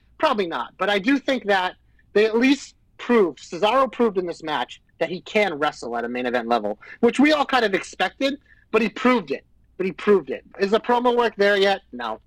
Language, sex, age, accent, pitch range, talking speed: English, male, 30-49, American, 165-220 Hz, 225 wpm